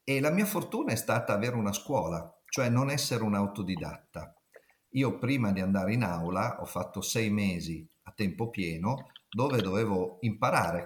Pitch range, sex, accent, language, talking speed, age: 95-120 Hz, male, native, Italian, 165 wpm, 50-69